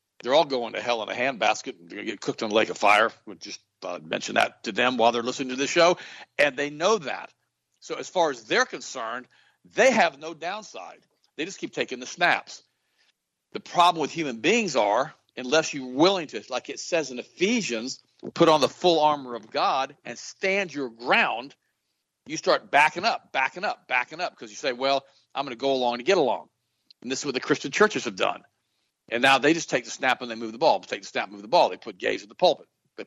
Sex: male